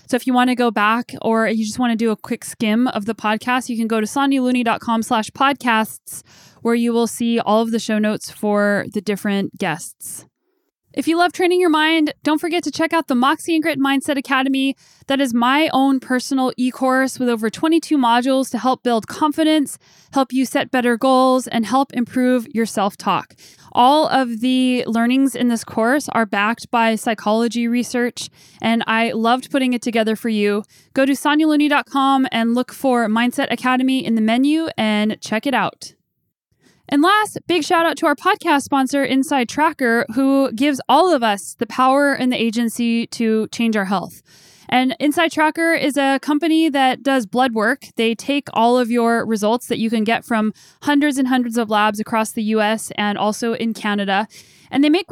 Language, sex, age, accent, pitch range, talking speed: English, female, 10-29, American, 225-275 Hz, 190 wpm